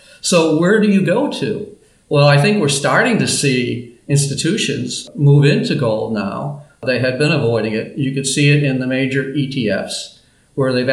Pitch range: 130-160 Hz